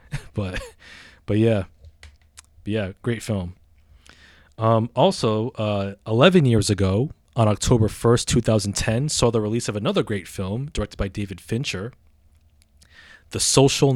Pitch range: 95-125 Hz